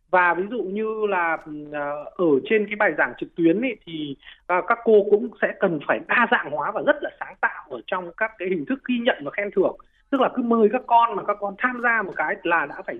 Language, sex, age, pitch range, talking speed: Vietnamese, male, 20-39, 190-250 Hz, 255 wpm